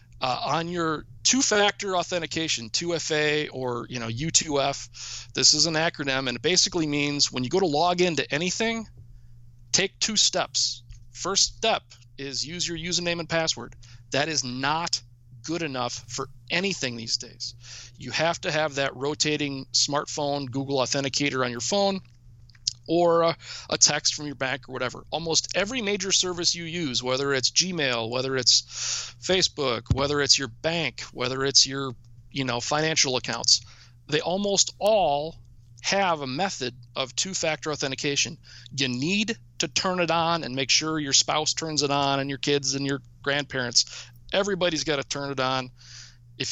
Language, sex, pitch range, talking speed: English, male, 120-165 Hz, 160 wpm